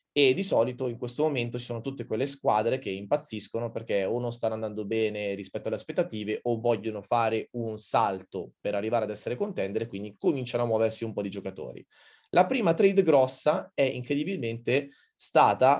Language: Italian